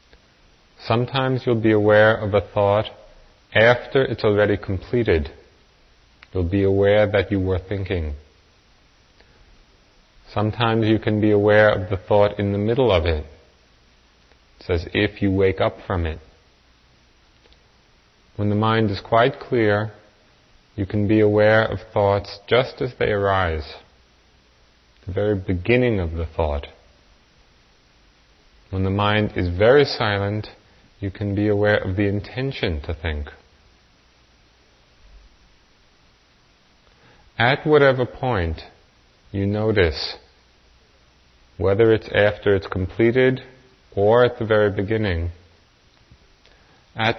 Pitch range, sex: 85-105 Hz, male